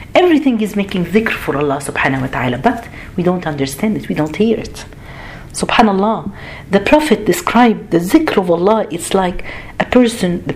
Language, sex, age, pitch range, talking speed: Arabic, female, 50-69, 145-215 Hz, 175 wpm